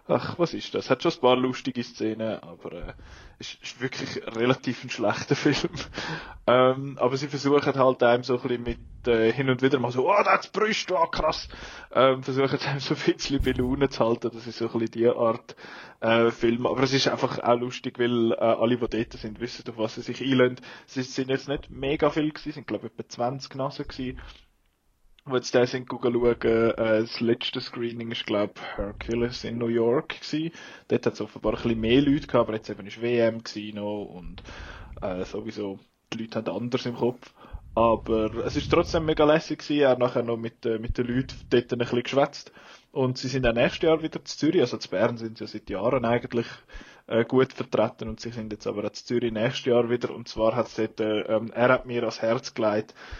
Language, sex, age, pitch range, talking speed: German, male, 20-39, 115-130 Hz, 220 wpm